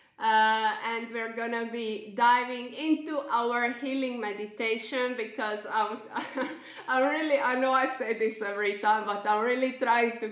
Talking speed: 165 wpm